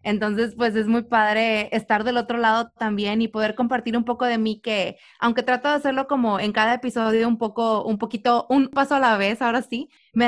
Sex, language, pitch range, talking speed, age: female, Spanish, 210-250 Hz, 220 wpm, 20-39